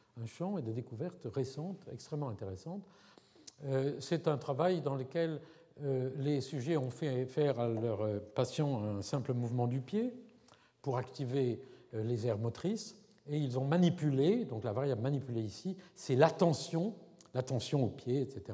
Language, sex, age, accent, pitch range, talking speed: French, male, 50-69, French, 115-155 Hz, 160 wpm